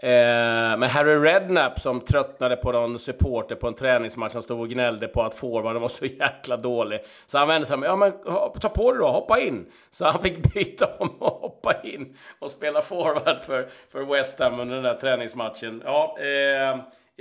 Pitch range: 125-160 Hz